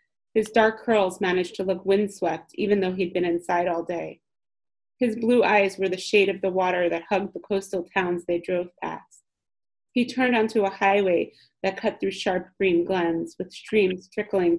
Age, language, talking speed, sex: 30-49, English, 185 wpm, female